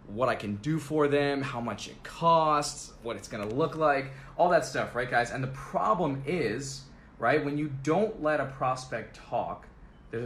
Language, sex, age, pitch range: English, male, 20-39, 115-150 Hz